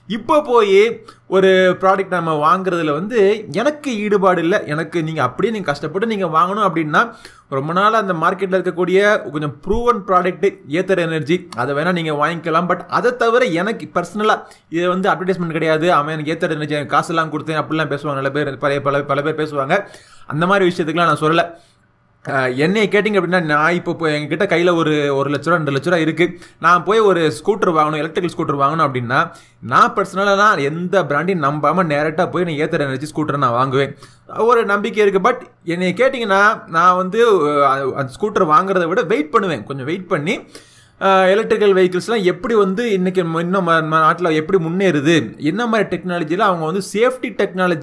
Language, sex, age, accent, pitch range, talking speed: Tamil, male, 20-39, native, 155-195 Hz, 160 wpm